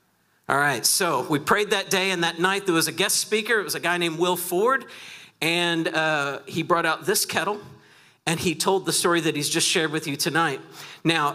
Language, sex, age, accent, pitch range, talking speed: English, male, 50-69, American, 145-180 Hz, 220 wpm